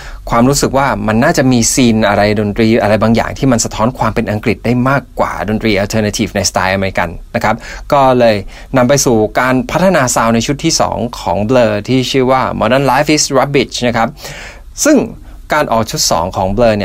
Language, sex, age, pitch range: Thai, male, 20-39, 110-135 Hz